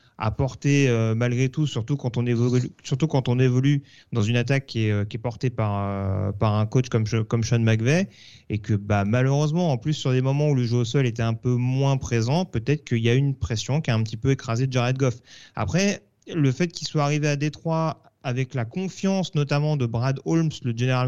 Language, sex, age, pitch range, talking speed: French, male, 30-49, 115-145 Hz, 235 wpm